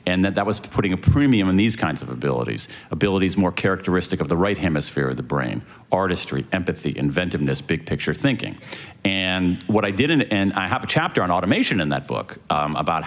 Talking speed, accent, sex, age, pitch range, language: 205 wpm, American, male, 40-59, 85-100 Hz, English